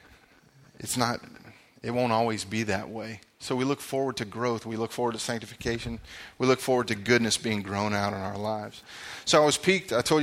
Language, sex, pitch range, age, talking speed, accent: English, male, 110-130 Hz, 30-49, 210 wpm, American